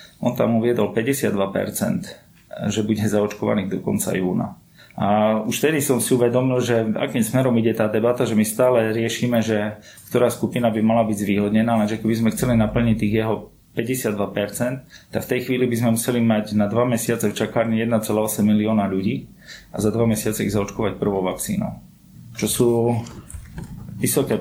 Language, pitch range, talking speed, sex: Slovak, 110-125 Hz, 170 wpm, male